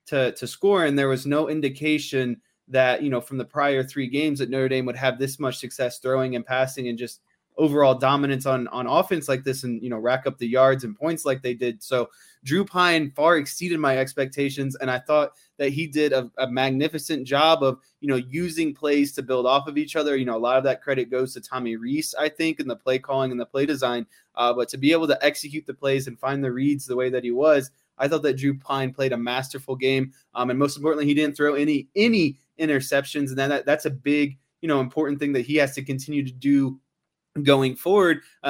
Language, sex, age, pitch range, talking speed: English, male, 20-39, 130-145 Hz, 240 wpm